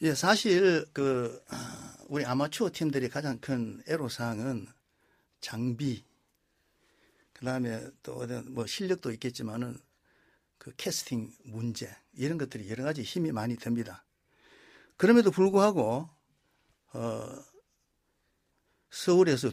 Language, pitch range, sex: Korean, 120-170 Hz, male